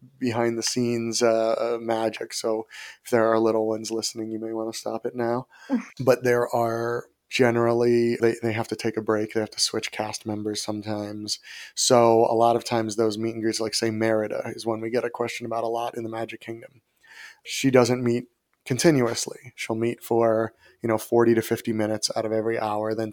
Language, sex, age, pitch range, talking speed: English, male, 30-49, 115-125 Hz, 210 wpm